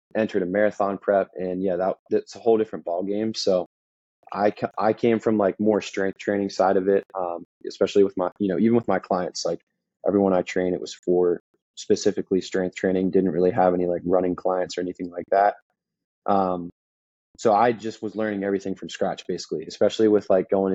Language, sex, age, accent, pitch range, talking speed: English, male, 20-39, American, 90-110 Hz, 205 wpm